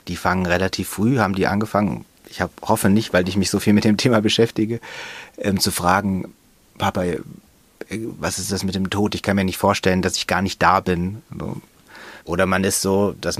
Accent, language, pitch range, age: German, German, 90-105 Hz, 30-49